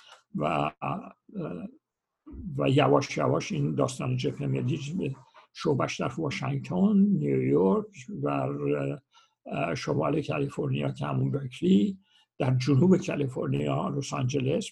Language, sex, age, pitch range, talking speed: Persian, male, 60-79, 125-185 Hz, 85 wpm